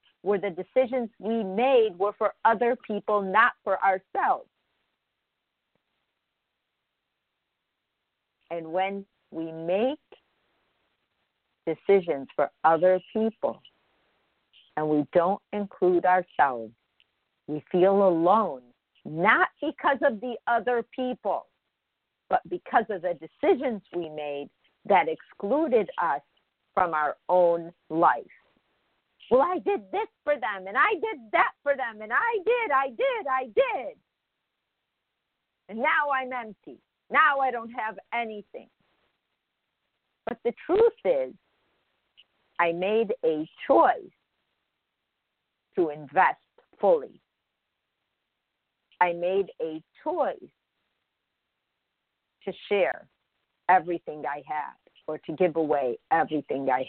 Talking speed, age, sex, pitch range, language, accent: 110 wpm, 50-69, female, 175-265 Hz, English, American